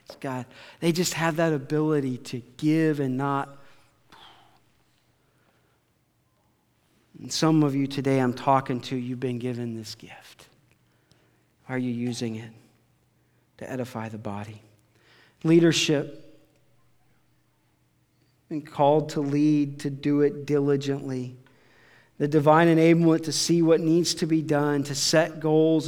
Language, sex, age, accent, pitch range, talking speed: English, male, 40-59, American, 130-155 Hz, 125 wpm